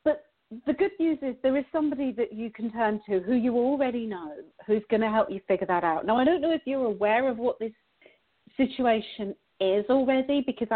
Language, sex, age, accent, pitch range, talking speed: English, female, 40-59, British, 200-275 Hz, 210 wpm